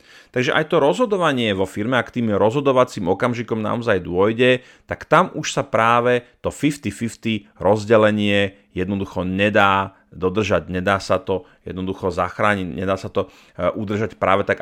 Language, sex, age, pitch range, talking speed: Slovak, male, 30-49, 95-115 Hz, 140 wpm